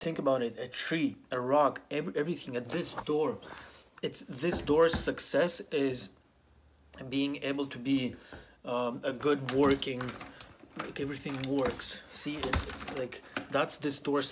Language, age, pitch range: English, 30-49, 125-140 Hz